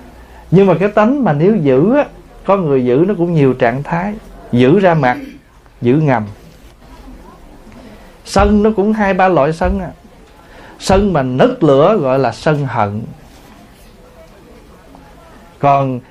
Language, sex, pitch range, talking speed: Vietnamese, male, 135-185 Hz, 140 wpm